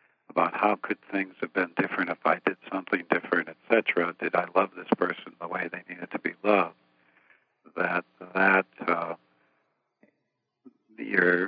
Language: English